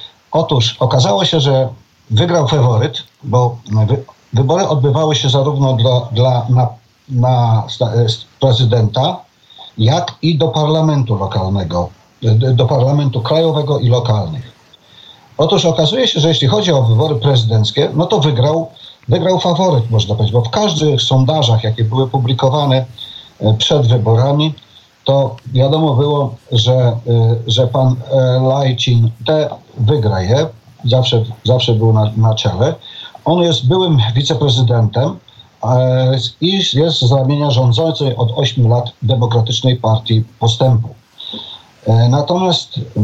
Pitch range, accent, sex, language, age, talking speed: 115-140 Hz, native, male, Polish, 50-69, 120 wpm